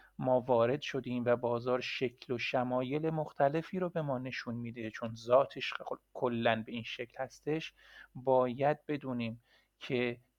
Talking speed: 140 wpm